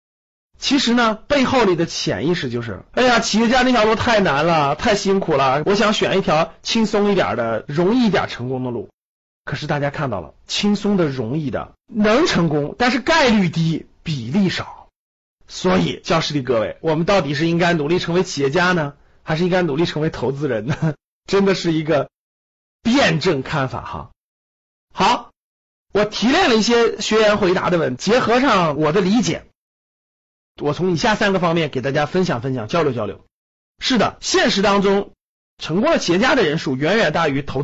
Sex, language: male, Chinese